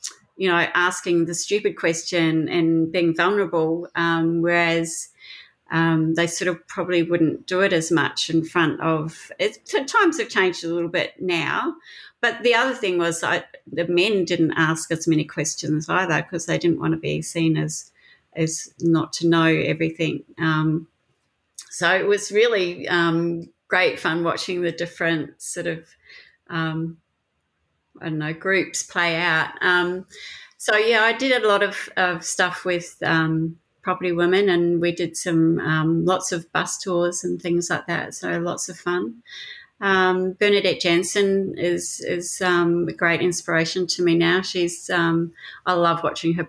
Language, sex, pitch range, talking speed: English, female, 165-180 Hz, 170 wpm